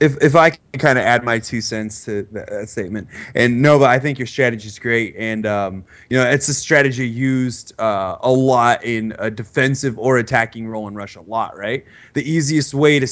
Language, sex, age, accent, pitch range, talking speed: English, male, 20-39, American, 115-135 Hz, 215 wpm